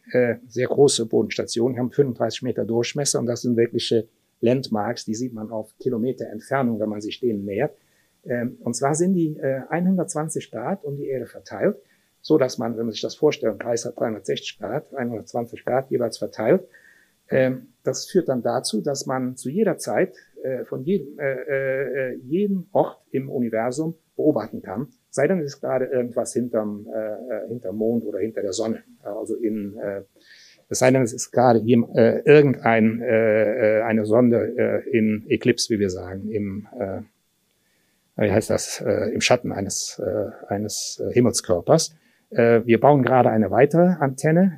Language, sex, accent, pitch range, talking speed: German, male, German, 110-140 Hz, 170 wpm